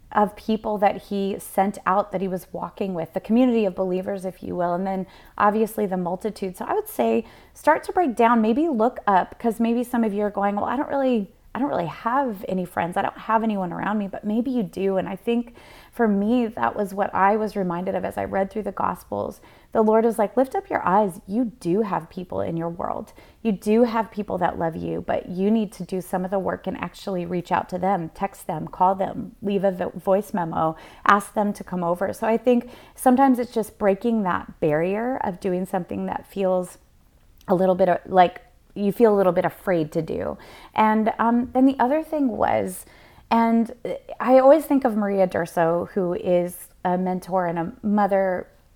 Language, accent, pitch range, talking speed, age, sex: English, American, 185-230 Hz, 215 wpm, 30-49, female